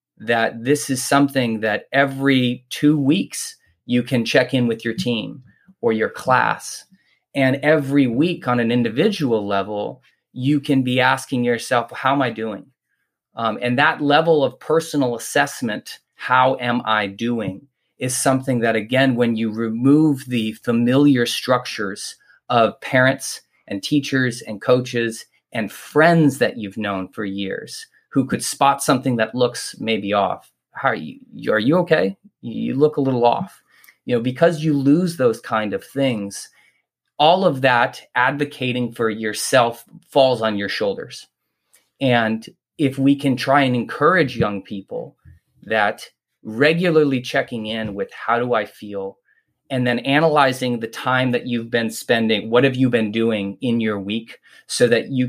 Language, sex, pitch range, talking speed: English, male, 115-140 Hz, 155 wpm